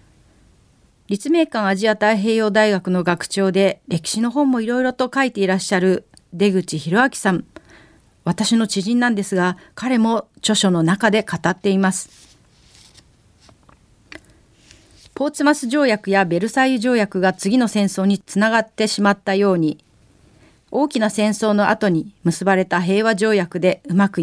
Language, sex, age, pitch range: Japanese, female, 40-59, 180-235 Hz